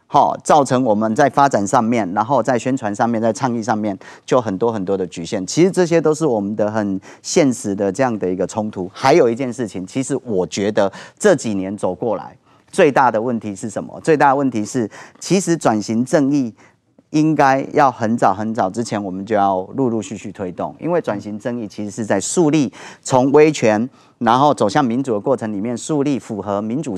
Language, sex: Chinese, male